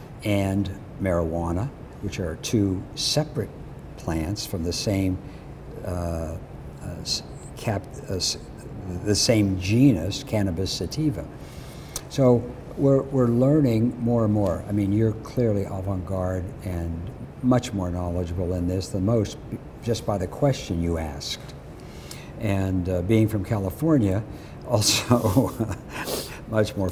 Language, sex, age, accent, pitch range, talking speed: English, male, 60-79, American, 90-120 Hz, 120 wpm